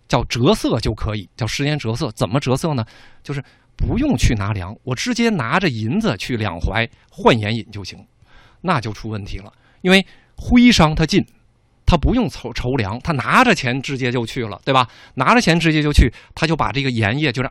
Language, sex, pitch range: Chinese, male, 110-150 Hz